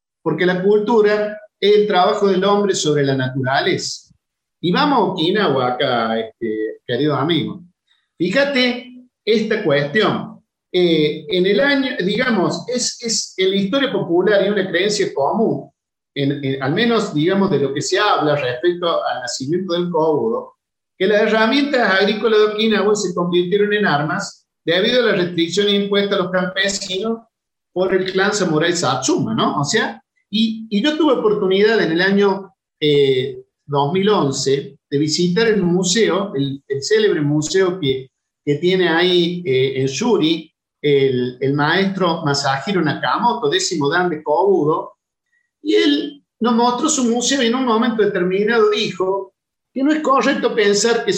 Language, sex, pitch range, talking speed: Spanish, male, 160-220 Hz, 150 wpm